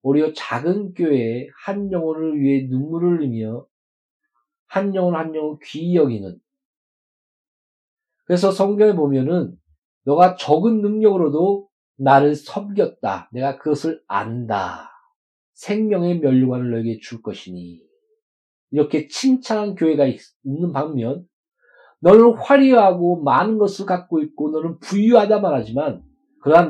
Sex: male